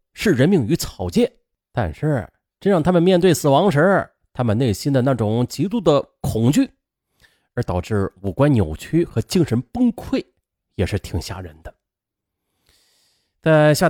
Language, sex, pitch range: Chinese, male, 105-170 Hz